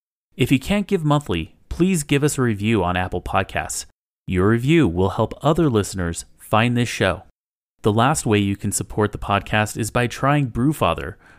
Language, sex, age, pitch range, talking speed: English, male, 30-49, 95-130 Hz, 180 wpm